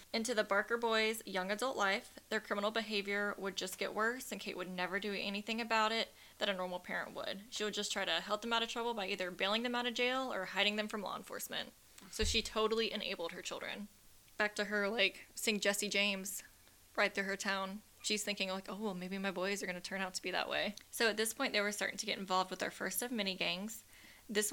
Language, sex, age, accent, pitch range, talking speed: English, female, 10-29, American, 190-225 Hz, 245 wpm